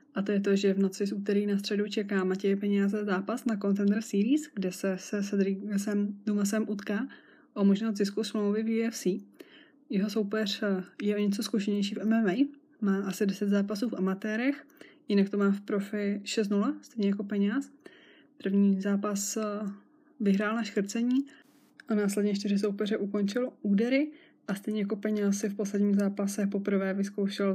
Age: 20-39